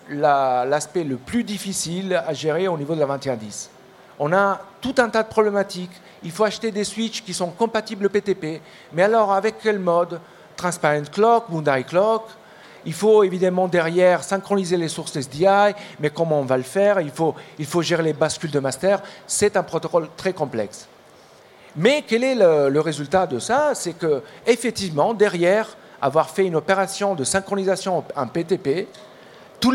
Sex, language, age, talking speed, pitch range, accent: male, French, 50-69, 175 wpm, 160-205 Hz, French